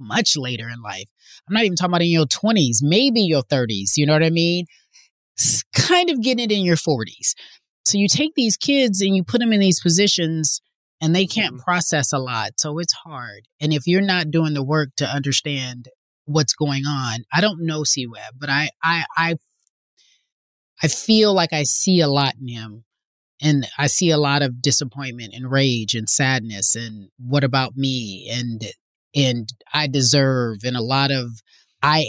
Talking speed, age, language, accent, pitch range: 190 wpm, 30-49, English, American, 125-165 Hz